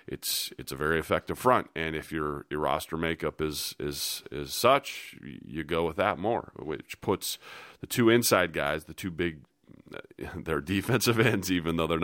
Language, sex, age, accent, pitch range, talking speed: English, male, 30-49, American, 75-90 Hz, 180 wpm